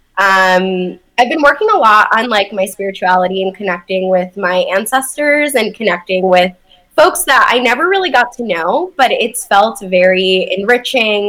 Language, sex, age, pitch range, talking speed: English, female, 10-29, 190-270 Hz, 165 wpm